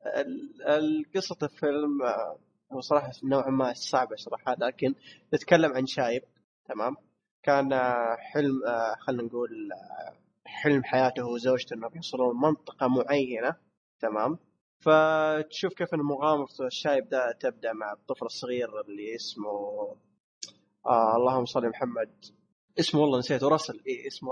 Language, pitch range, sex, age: Arabic, 125-160 Hz, male, 20-39